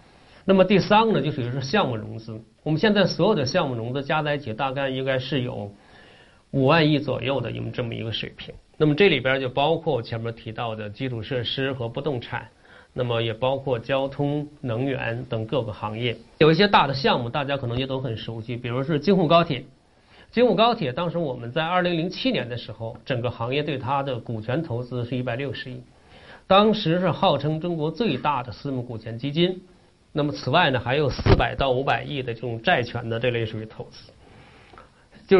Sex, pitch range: male, 120-165 Hz